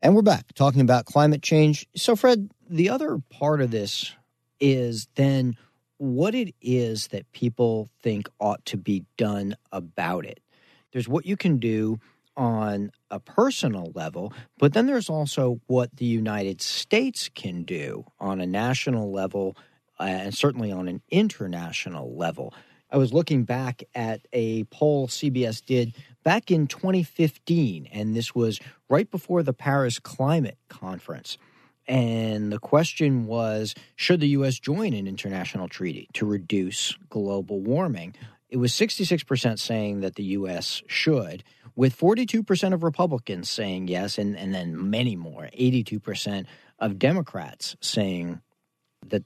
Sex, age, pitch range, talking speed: male, 40-59, 105-150 Hz, 145 wpm